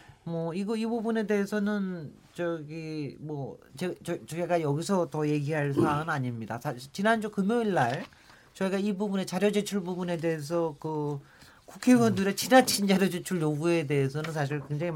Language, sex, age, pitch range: Korean, male, 40-59, 145-210 Hz